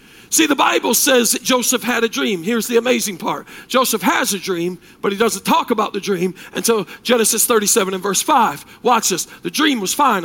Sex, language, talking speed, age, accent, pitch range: male, English, 210 wpm, 40-59, American, 230-310 Hz